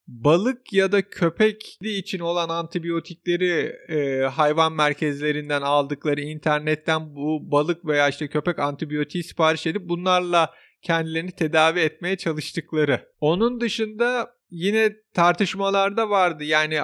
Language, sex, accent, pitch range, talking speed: Turkish, male, native, 160-200 Hz, 110 wpm